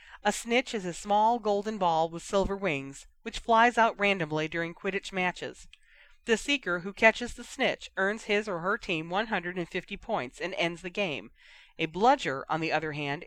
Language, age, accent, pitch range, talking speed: English, 40-59, American, 160-225 Hz, 180 wpm